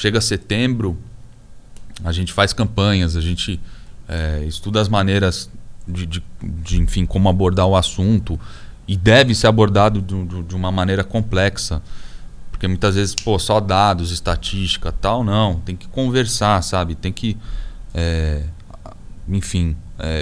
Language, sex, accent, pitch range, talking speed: Portuguese, male, Brazilian, 85-105 Hz, 125 wpm